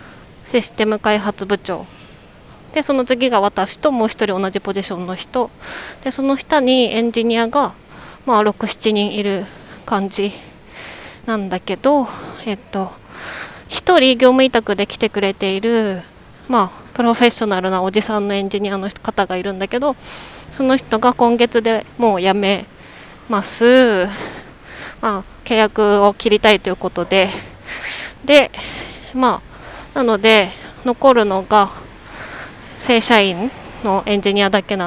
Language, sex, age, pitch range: Japanese, female, 20-39, 195-245 Hz